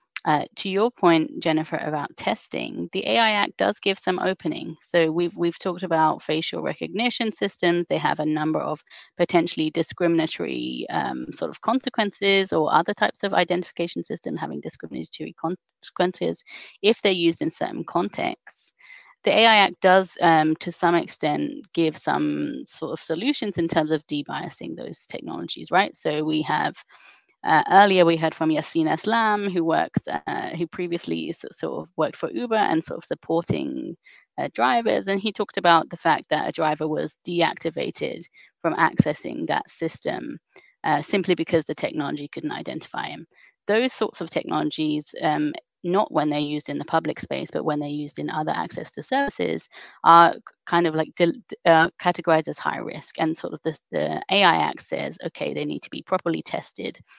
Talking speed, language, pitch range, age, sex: 170 wpm, English, 155-195 Hz, 30-49, female